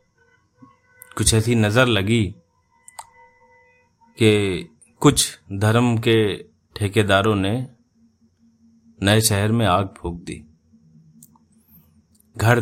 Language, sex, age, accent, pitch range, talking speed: Hindi, male, 30-49, native, 95-120 Hz, 80 wpm